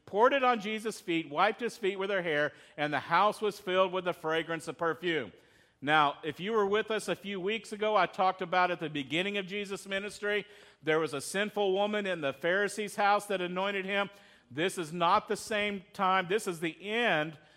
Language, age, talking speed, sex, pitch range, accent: English, 50-69, 210 wpm, male, 160-200 Hz, American